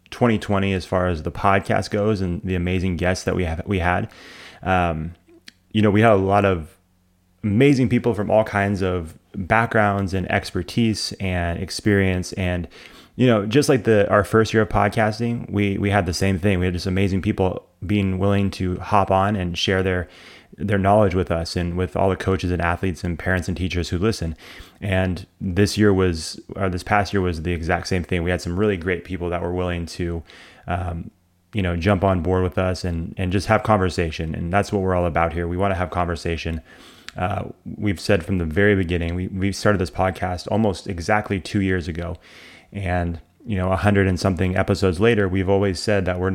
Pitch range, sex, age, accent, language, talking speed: 90-100 Hz, male, 20-39, American, English, 210 wpm